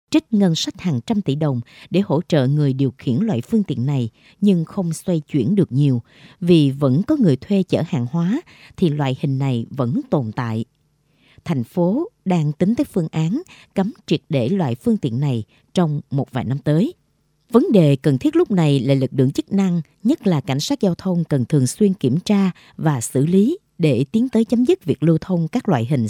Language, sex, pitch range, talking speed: Vietnamese, female, 135-195 Hz, 215 wpm